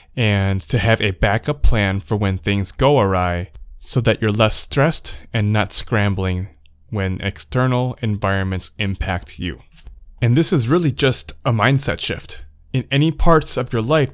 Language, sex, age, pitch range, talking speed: English, male, 20-39, 95-120 Hz, 160 wpm